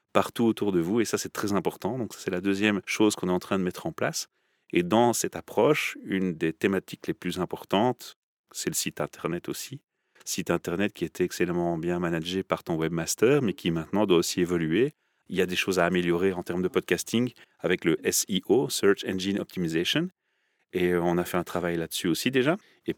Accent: French